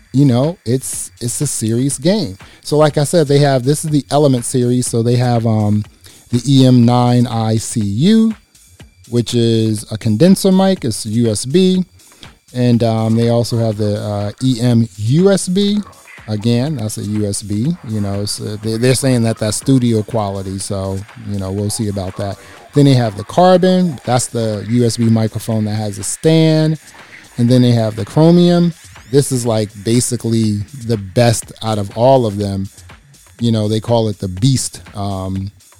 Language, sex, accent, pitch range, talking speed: English, male, American, 105-130 Hz, 165 wpm